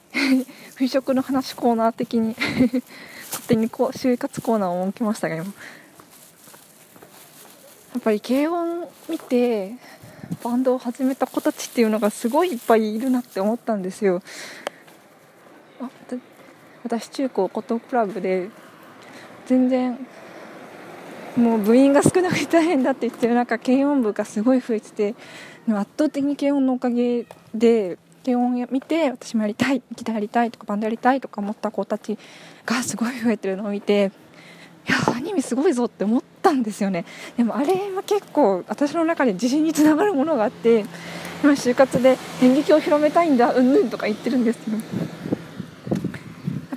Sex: female